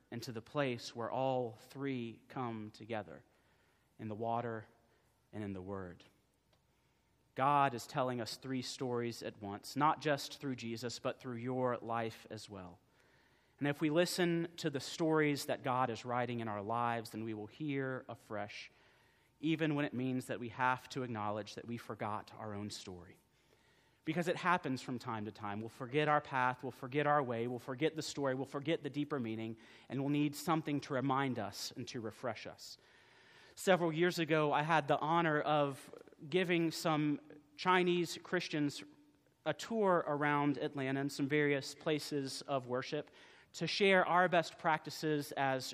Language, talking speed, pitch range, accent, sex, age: English, 170 wpm, 120-150 Hz, American, male, 40-59